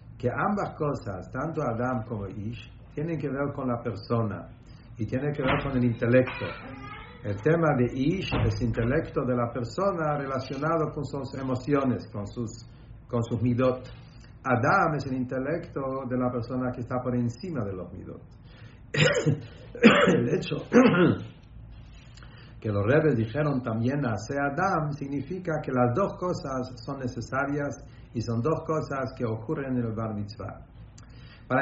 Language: English